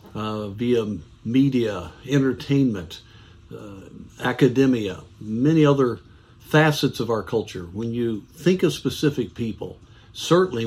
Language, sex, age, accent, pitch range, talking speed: English, male, 50-69, American, 110-135 Hz, 105 wpm